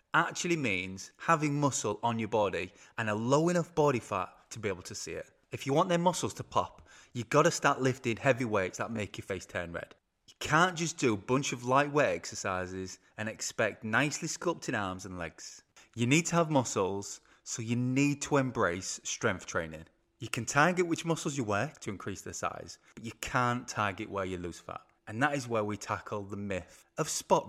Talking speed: 210 wpm